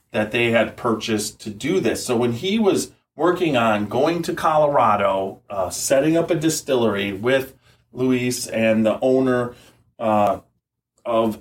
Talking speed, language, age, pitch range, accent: 145 wpm, English, 30-49, 115-160 Hz, American